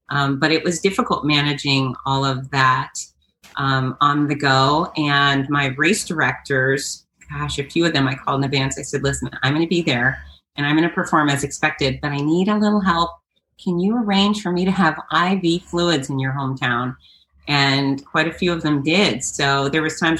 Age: 30-49